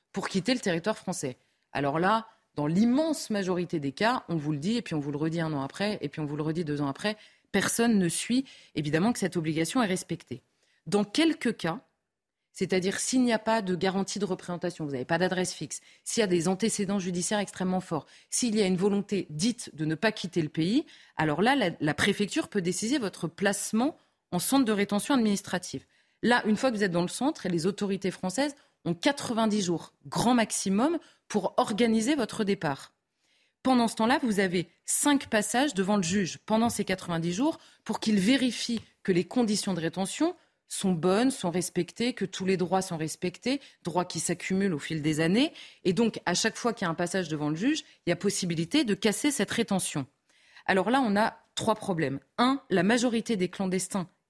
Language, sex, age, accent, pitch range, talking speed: French, female, 30-49, French, 175-230 Hz, 205 wpm